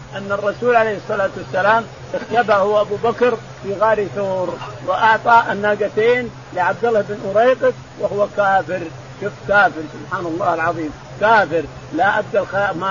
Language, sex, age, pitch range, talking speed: Arabic, male, 50-69, 175-235 Hz, 135 wpm